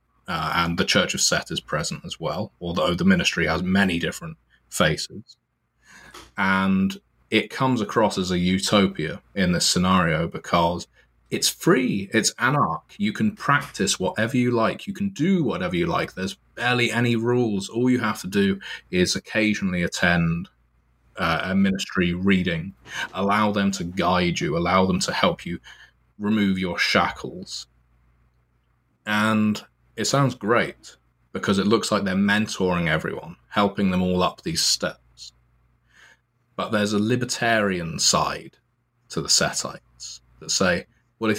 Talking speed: 150 wpm